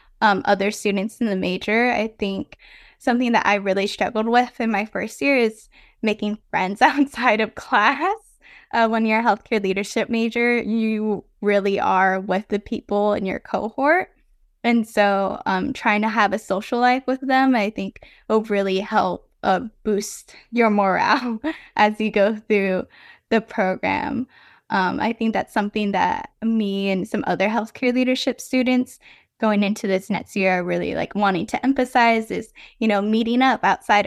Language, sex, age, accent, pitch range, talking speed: English, female, 10-29, American, 200-250 Hz, 170 wpm